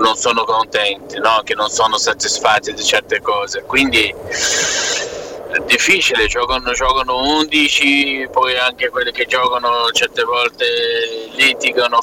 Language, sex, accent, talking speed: Italian, male, native, 125 wpm